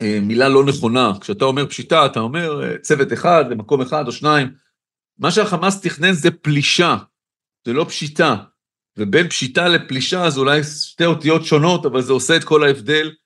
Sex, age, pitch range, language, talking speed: male, 40-59, 135-170 Hz, Hebrew, 165 wpm